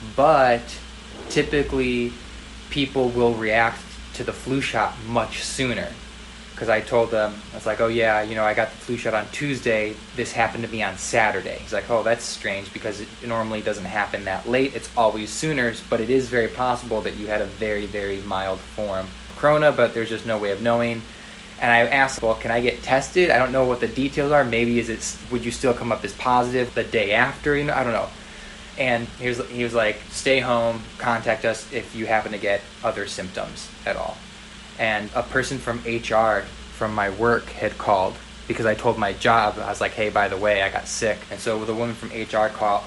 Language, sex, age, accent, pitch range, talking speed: English, male, 20-39, American, 105-125 Hz, 215 wpm